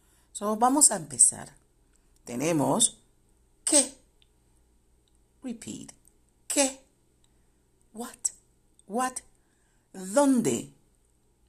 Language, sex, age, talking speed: Spanish, female, 60-79, 55 wpm